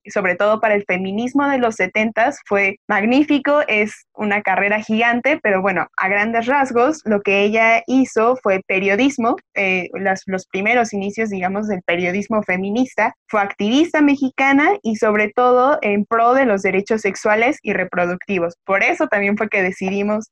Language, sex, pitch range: Spanish, female, 195-240 Hz